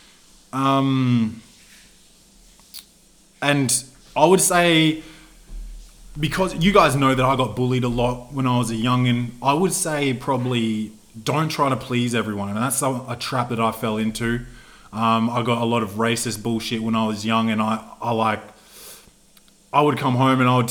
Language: English